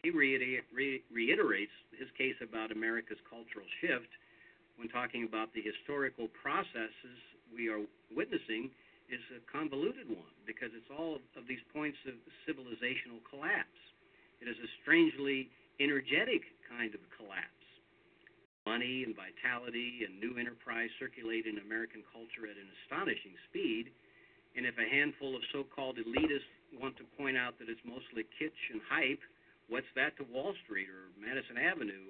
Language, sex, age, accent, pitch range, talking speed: English, male, 50-69, American, 115-150 Hz, 145 wpm